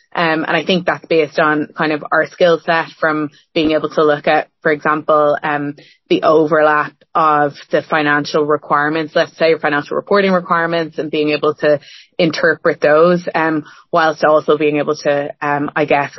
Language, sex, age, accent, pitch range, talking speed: English, female, 20-39, Irish, 150-160 Hz, 180 wpm